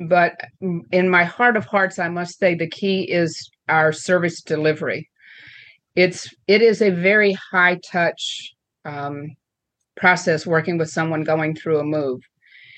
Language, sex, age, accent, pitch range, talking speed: English, female, 50-69, American, 160-185 Hz, 145 wpm